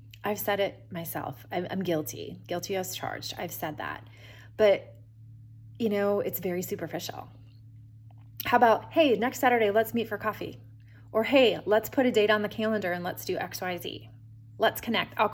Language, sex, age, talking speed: English, female, 20-39, 175 wpm